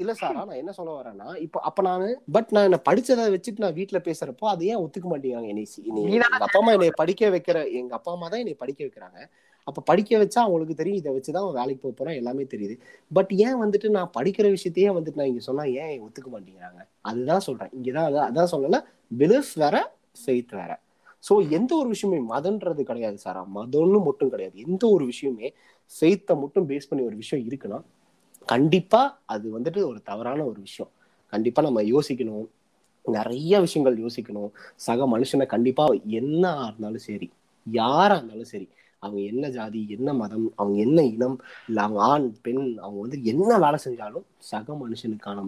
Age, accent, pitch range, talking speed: 20-39, native, 115-195 Hz, 165 wpm